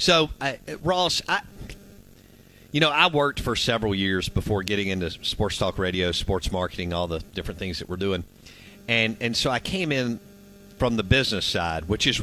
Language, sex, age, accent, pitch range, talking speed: English, male, 50-69, American, 100-125 Hz, 185 wpm